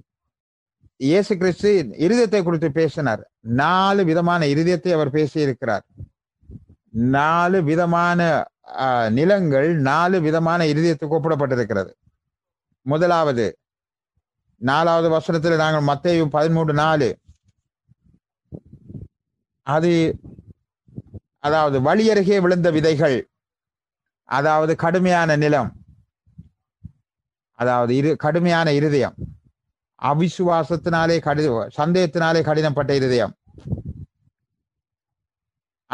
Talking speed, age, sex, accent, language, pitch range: 70 wpm, 30-49, male, Indian, English, 135-170 Hz